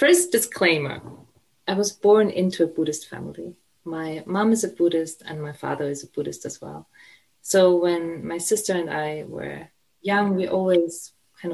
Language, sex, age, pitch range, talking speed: English, female, 20-39, 155-185 Hz, 170 wpm